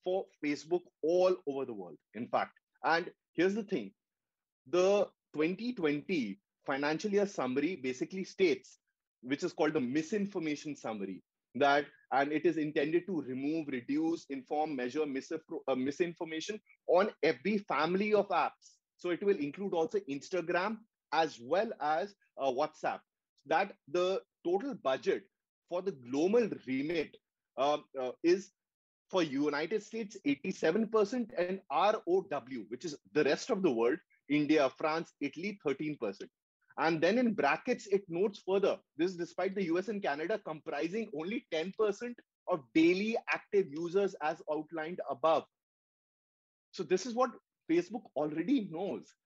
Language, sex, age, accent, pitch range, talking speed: English, male, 30-49, Indian, 155-210 Hz, 135 wpm